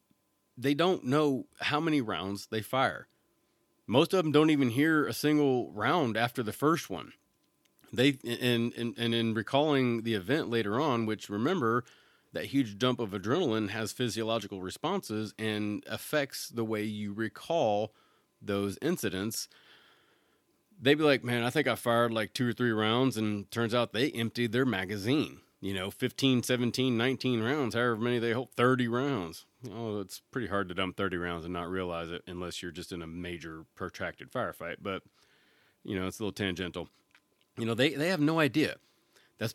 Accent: American